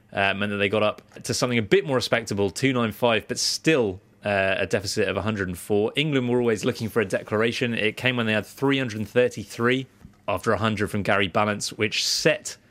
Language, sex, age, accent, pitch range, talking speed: English, male, 30-49, British, 105-130 Hz, 190 wpm